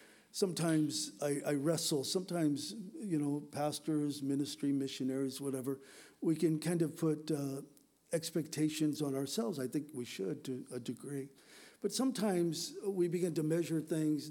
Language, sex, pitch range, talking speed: English, male, 140-175 Hz, 145 wpm